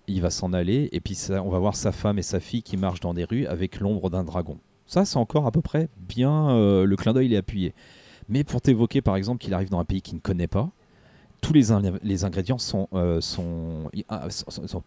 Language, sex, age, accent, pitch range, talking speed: French, male, 30-49, French, 95-120 Hz, 220 wpm